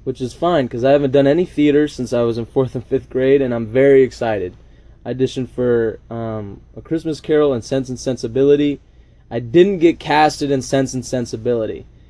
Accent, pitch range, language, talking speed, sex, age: American, 115-145 Hz, English, 200 wpm, male, 20-39